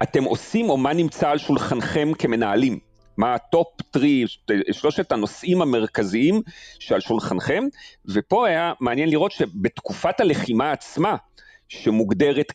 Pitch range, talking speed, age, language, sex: 105-155 Hz, 115 wpm, 40-59, Hebrew, male